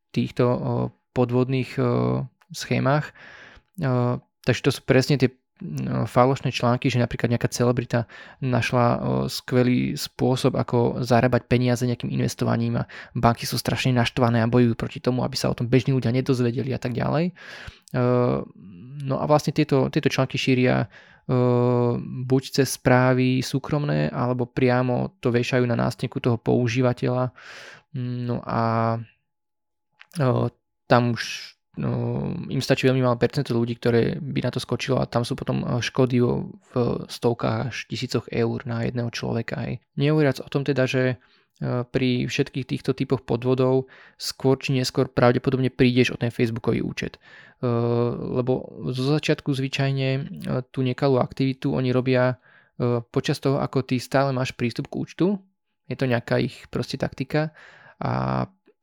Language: Slovak